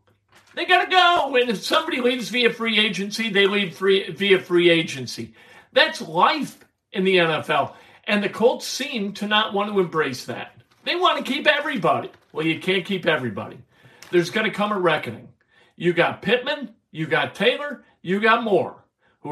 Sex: male